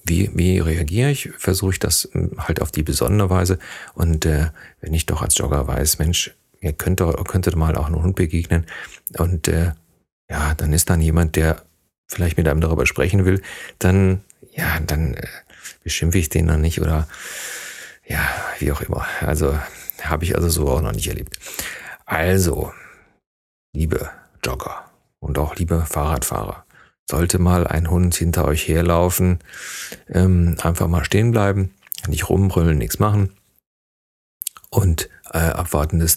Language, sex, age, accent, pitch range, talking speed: German, male, 40-59, German, 75-95 Hz, 155 wpm